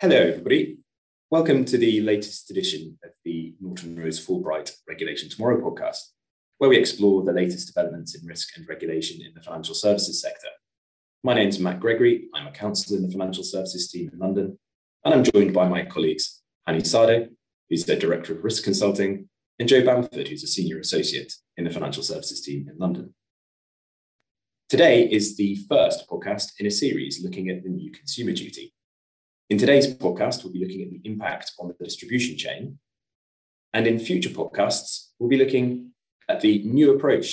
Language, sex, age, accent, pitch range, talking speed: English, male, 30-49, British, 90-125 Hz, 180 wpm